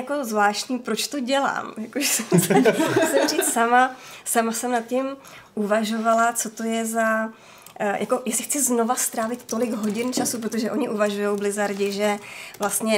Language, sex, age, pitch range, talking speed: Czech, female, 20-39, 205-235 Hz, 155 wpm